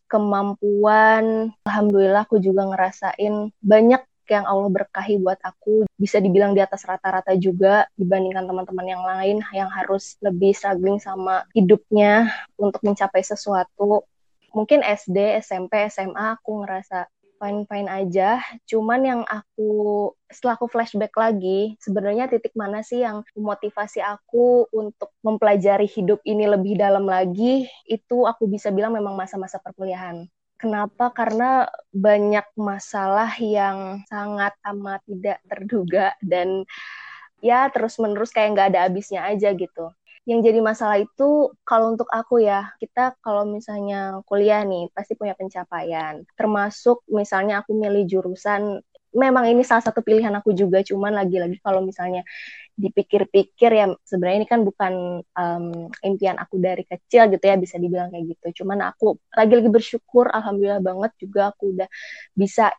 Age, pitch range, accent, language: 20-39, 190-220 Hz, native, Indonesian